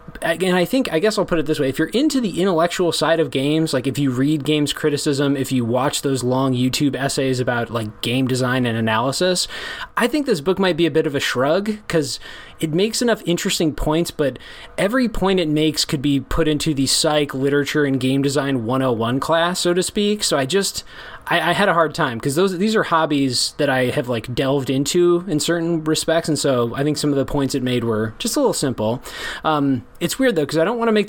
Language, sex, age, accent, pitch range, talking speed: English, male, 20-39, American, 135-175 Hz, 235 wpm